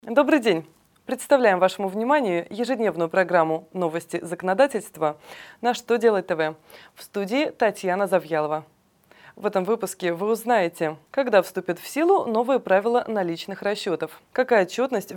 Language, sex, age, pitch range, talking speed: Russian, female, 20-39, 175-240 Hz, 125 wpm